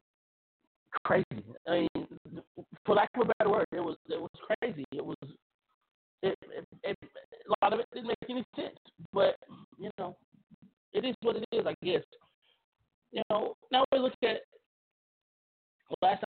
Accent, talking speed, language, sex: American, 160 wpm, English, male